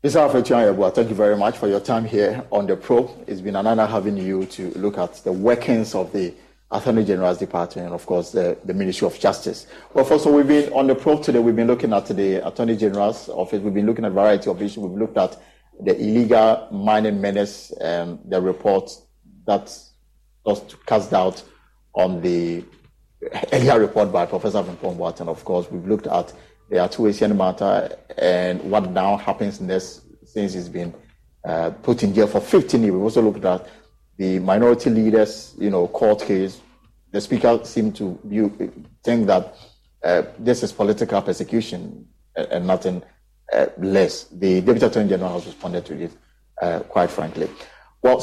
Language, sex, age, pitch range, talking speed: English, male, 30-49, 95-110 Hz, 185 wpm